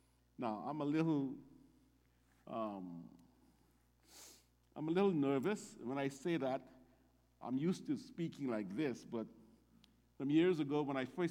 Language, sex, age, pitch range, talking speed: English, male, 60-79, 110-130 Hz, 140 wpm